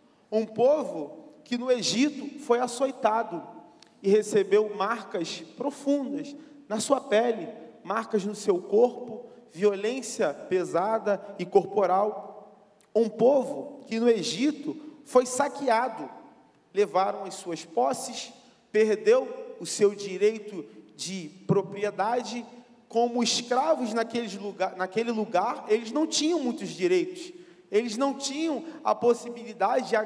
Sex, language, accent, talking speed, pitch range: male, Portuguese, Brazilian, 110 wpm, 205-260 Hz